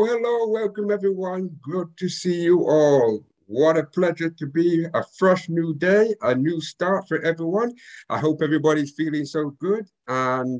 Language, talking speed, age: English, 165 wpm, 60-79